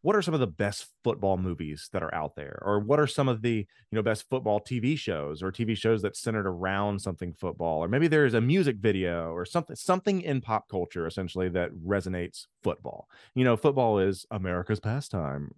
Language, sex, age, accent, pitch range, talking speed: English, male, 30-49, American, 90-135 Hz, 210 wpm